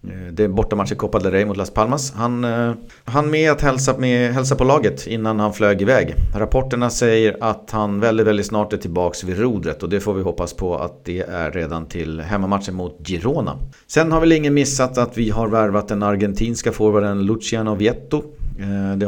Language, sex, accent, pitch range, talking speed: Swedish, male, native, 95-120 Hz, 205 wpm